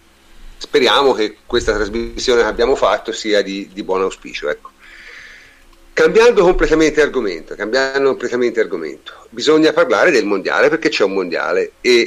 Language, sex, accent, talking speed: Italian, male, native, 125 wpm